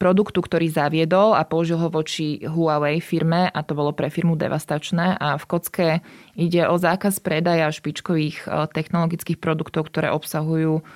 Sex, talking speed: female, 150 wpm